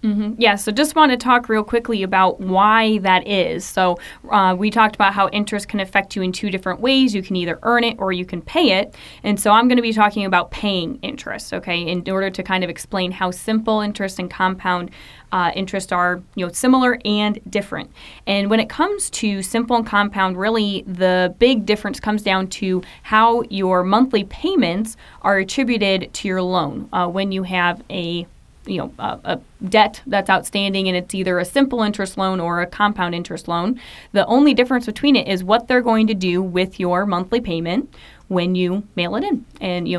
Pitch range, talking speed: 185-225 Hz, 205 wpm